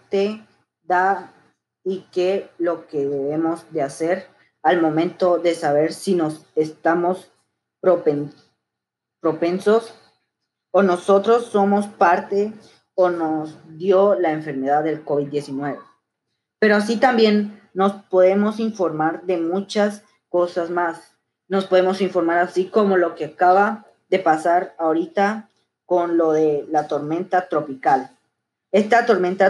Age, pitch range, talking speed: 20-39, 165-205 Hz, 115 wpm